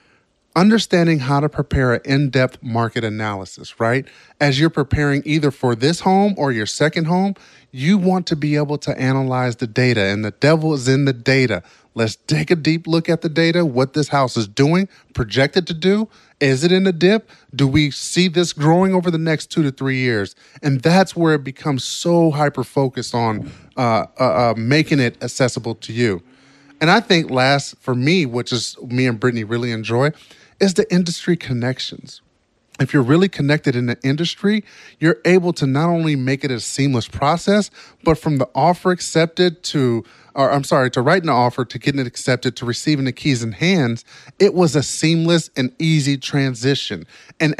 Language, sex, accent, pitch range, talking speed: English, male, American, 125-165 Hz, 190 wpm